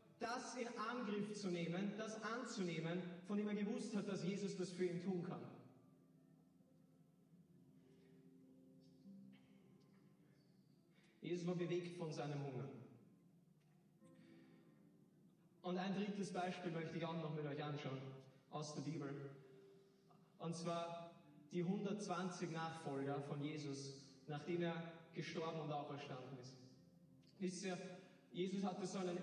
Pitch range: 155-185 Hz